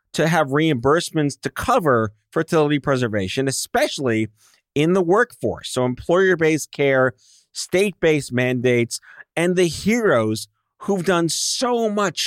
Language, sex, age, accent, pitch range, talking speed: English, male, 40-59, American, 125-185 Hz, 110 wpm